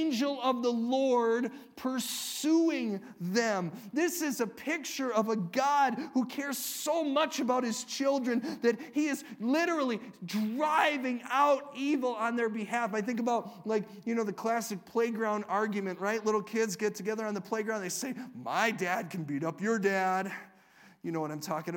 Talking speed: 170 wpm